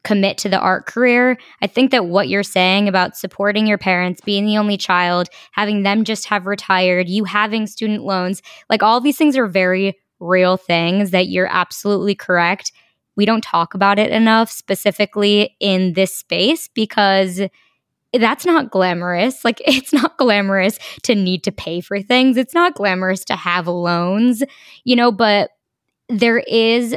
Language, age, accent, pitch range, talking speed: English, 10-29, American, 190-230 Hz, 165 wpm